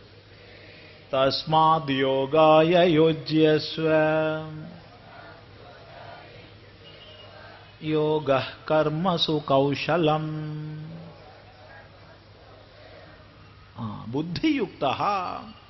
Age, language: 50-69, Malayalam